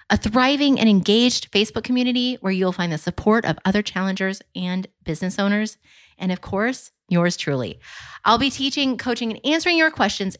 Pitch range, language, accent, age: 175-235 Hz, English, American, 30-49